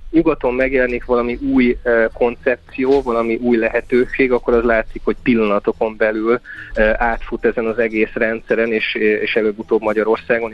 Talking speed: 140 wpm